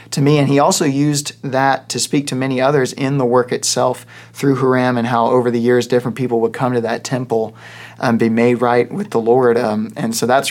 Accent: American